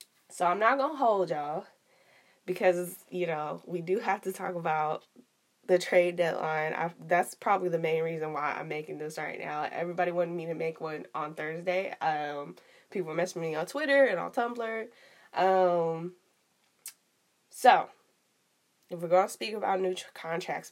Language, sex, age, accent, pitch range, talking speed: English, female, 20-39, American, 165-190 Hz, 175 wpm